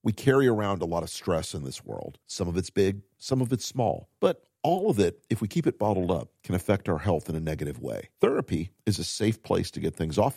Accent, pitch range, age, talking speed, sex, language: American, 95-130 Hz, 50-69, 260 wpm, male, English